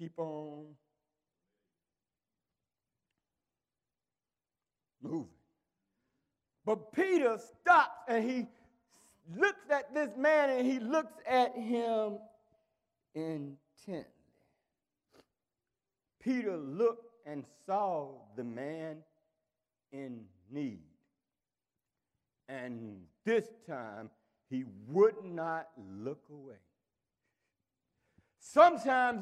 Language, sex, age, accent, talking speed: English, male, 60-79, American, 70 wpm